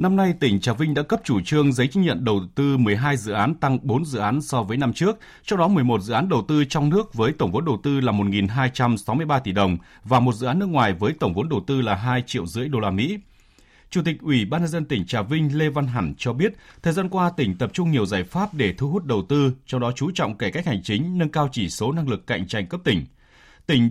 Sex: male